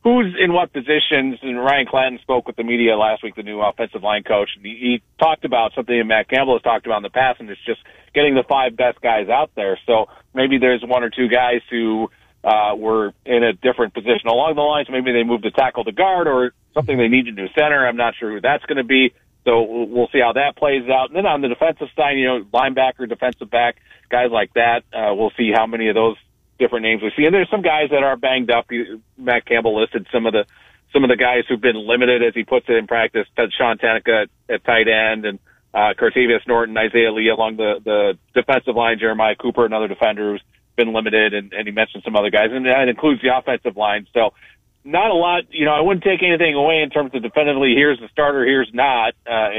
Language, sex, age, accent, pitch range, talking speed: English, male, 40-59, American, 115-135 Hz, 240 wpm